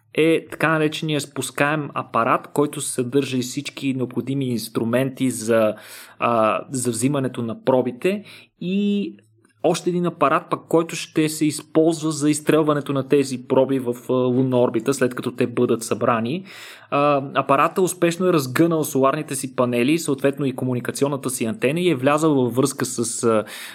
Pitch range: 130-165 Hz